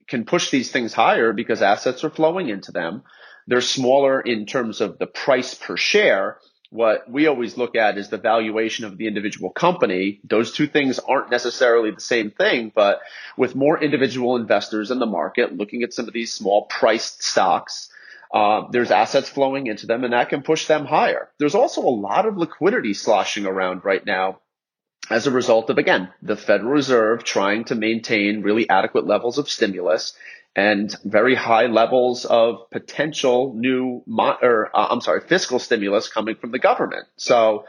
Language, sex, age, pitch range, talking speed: English, male, 30-49, 105-135 Hz, 180 wpm